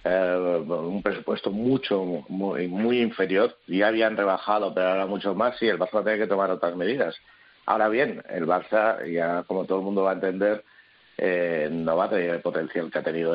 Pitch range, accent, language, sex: 95-120 Hz, Spanish, Spanish, male